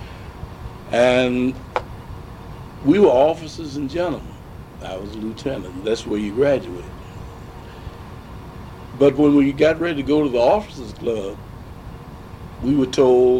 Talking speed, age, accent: 125 wpm, 60-79, American